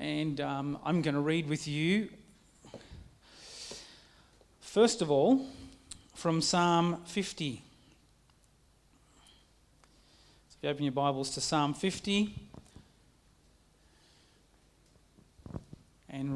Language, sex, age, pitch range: English, male, 40-59, 135-175 Hz